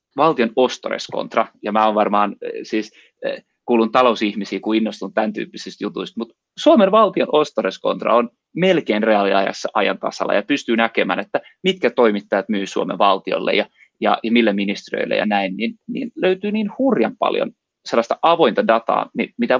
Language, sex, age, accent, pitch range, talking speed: Finnish, male, 30-49, native, 105-175 Hz, 145 wpm